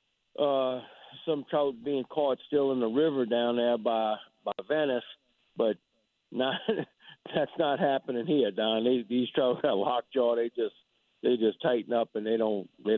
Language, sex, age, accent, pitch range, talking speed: English, male, 50-69, American, 110-125 Hz, 170 wpm